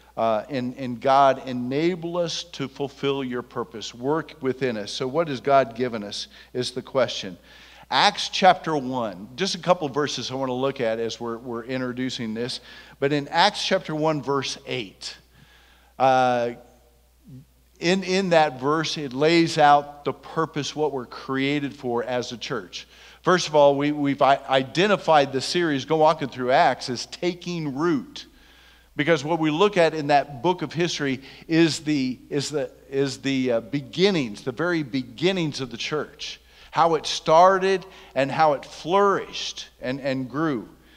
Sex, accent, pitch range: male, American, 130-170 Hz